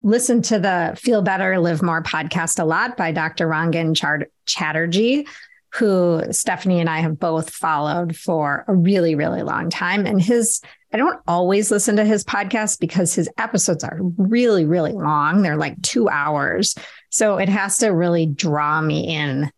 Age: 30-49